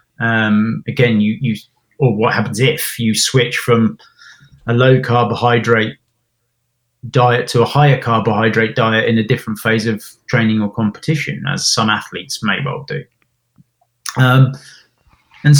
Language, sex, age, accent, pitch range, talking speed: English, male, 20-39, British, 110-135 Hz, 140 wpm